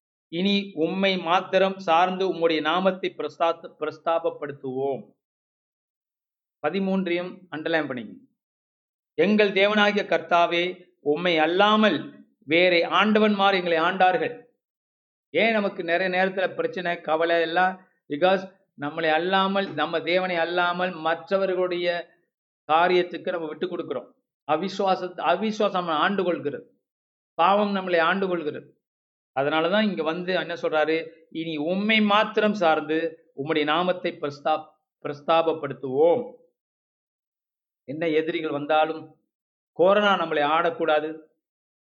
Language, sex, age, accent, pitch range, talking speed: Tamil, male, 50-69, native, 155-190 Hz, 90 wpm